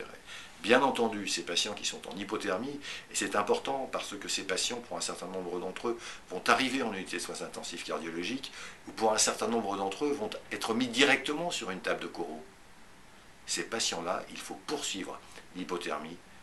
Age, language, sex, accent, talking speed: 50-69, French, male, French, 185 wpm